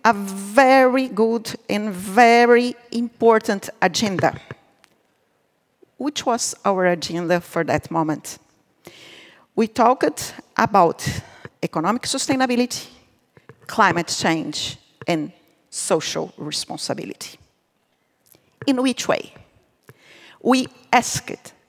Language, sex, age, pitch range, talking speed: English, female, 40-59, 185-255 Hz, 80 wpm